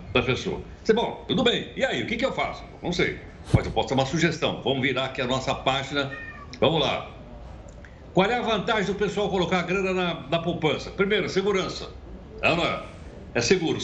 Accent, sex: Brazilian, male